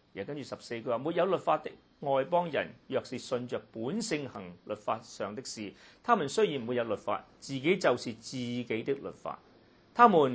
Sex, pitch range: male, 130-190 Hz